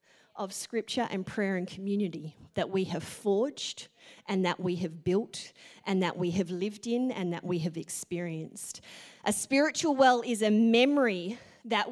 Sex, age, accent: female, 30-49, Australian